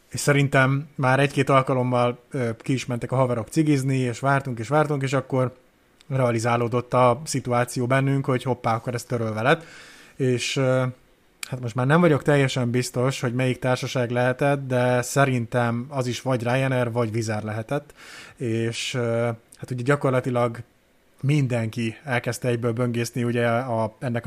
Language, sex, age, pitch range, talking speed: Hungarian, male, 20-39, 120-140 Hz, 145 wpm